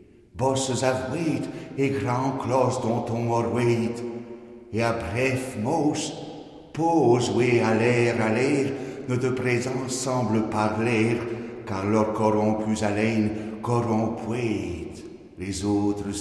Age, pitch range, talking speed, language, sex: 60-79, 95-120 Hz, 105 wpm, French, male